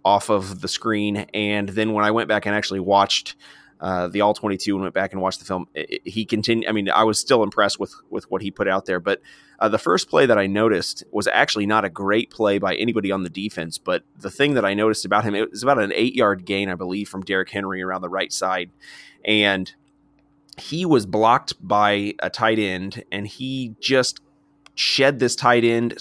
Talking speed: 230 wpm